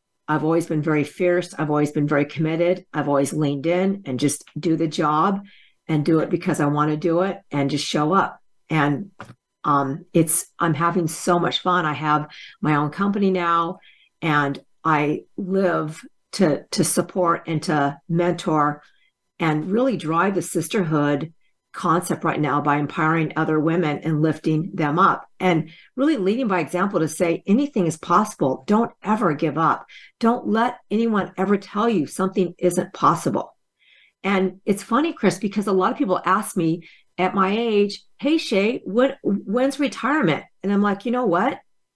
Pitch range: 155-205 Hz